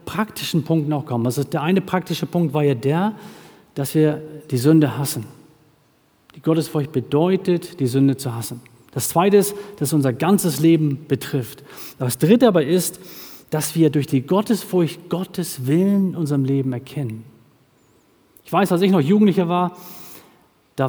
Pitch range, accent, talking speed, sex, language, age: 145-190 Hz, German, 160 wpm, male, German, 40-59